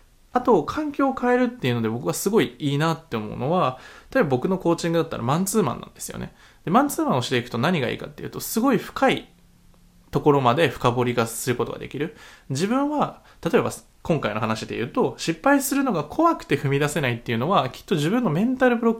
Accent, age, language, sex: native, 20-39, Japanese, male